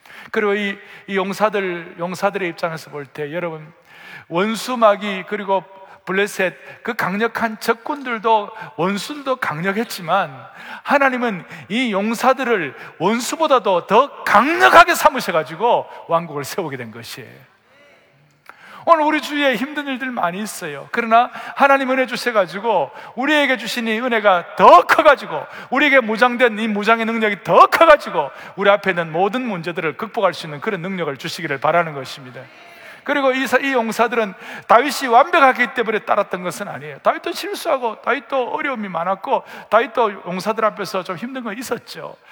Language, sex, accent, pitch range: Korean, male, native, 190-255 Hz